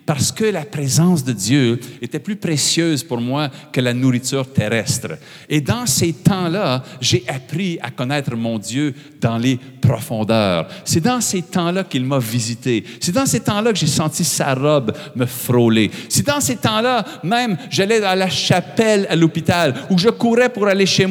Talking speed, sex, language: 180 wpm, male, French